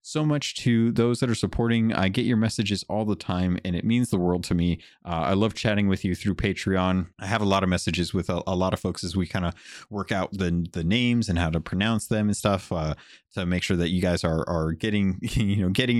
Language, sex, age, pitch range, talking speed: English, male, 30-49, 85-110 Hz, 265 wpm